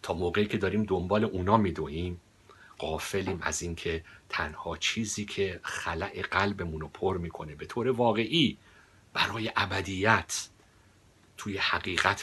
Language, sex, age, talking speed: Persian, male, 50-69, 130 wpm